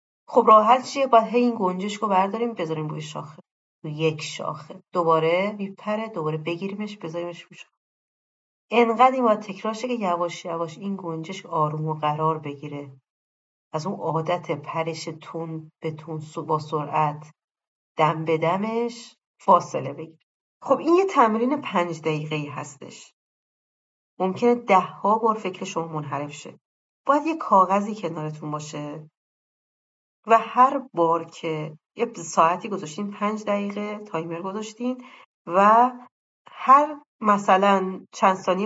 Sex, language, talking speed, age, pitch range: female, Persian, 125 wpm, 40-59, 160-215 Hz